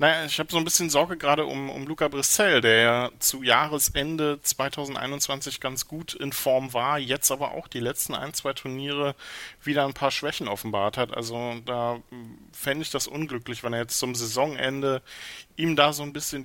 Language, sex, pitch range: German, male, 120-150 Hz